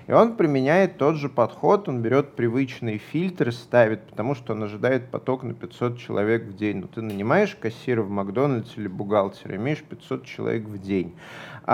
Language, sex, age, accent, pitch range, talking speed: Russian, male, 30-49, native, 110-145 Hz, 175 wpm